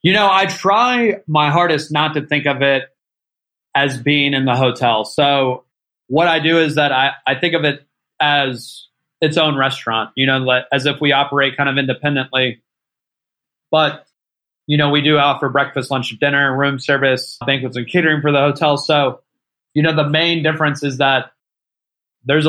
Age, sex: 30-49, male